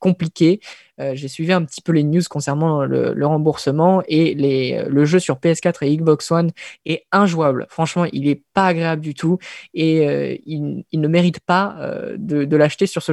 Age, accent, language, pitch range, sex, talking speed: 20-39, French, French, 150-180 Hz, female, 200 wpm